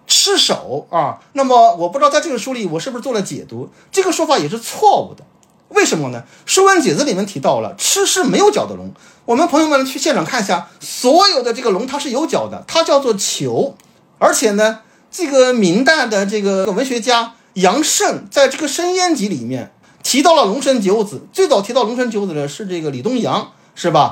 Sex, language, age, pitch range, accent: male, Chinese, 50-69, 200-295 Hz, native